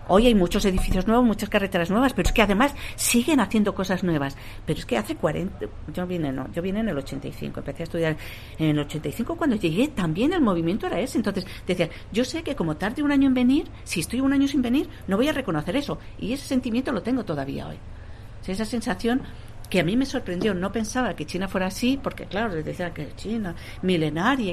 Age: 50-69